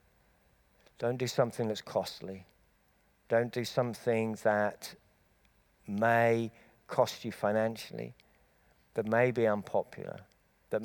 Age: 50-69